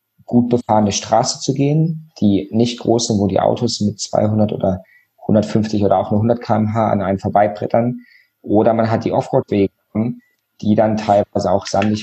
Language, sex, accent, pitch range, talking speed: German, male, German, 100-120 Hz, 170 wpm